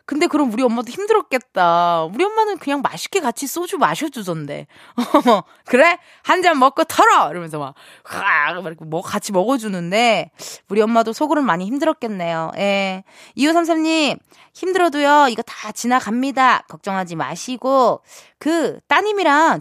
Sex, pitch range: female, 185-295 Hz